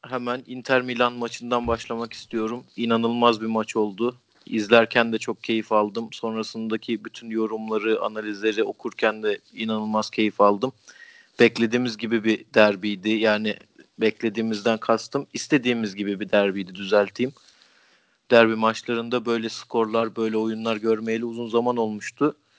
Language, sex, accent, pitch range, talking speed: Turkish, male, native, 110-130 Hz, 120 wpm